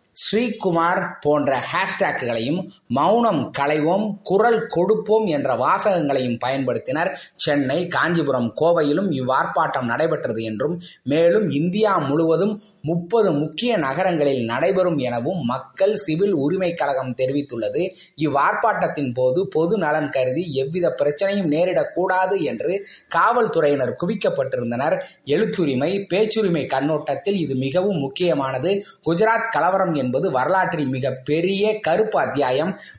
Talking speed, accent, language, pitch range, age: 95 wpm, native, Tamil, 145-200 Hz, 20-39